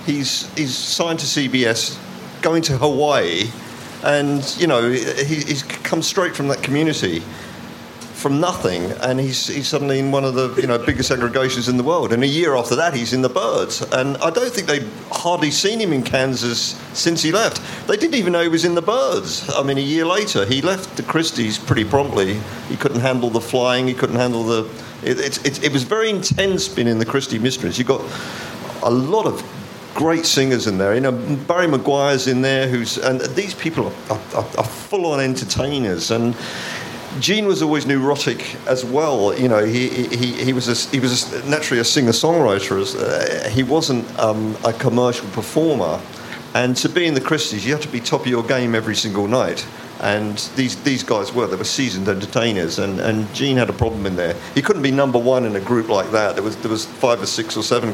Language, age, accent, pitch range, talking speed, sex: English, 50-69, British, 120-150 Hz, 210 wpm, male